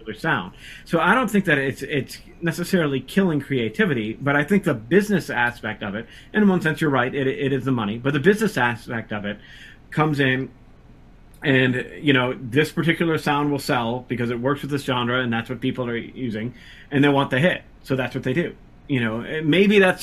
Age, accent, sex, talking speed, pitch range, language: 30-49, American, male, 215 wpm, 120-150 Hz, English